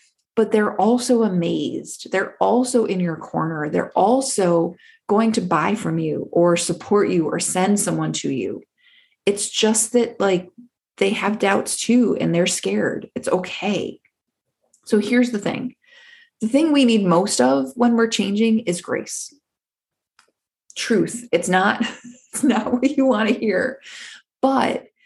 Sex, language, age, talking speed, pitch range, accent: female, English, 30-49, 150 wpm, 180-245 Hz, American